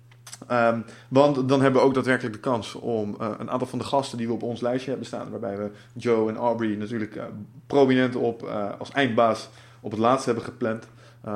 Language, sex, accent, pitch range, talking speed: Dutch, male, Dutch, 110-130 Hz, 215 wpm